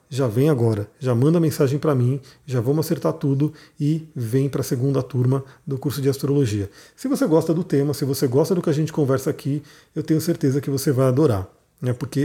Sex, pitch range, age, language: male, 135-165 Hz, 40-59, Portuguese